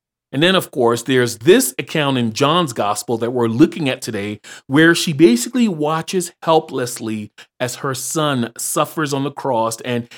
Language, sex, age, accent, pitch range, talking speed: English, male, 40-59, American, 120-160 Hz, 165 wpm